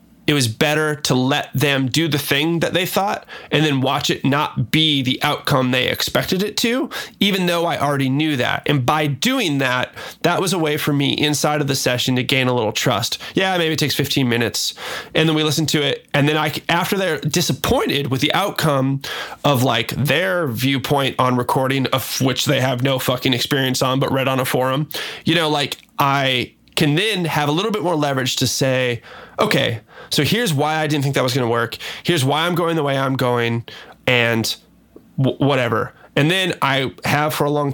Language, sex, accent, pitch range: English, male, American, 130-155 Hz